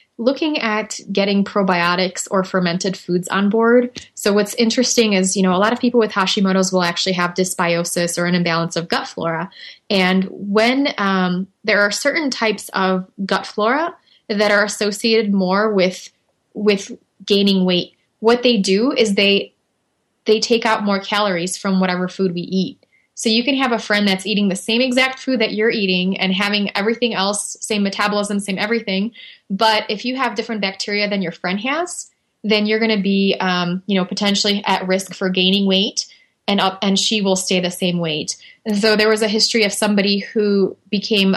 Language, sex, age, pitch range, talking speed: English, female, 20-39, 185-215 Hz, 190 wpm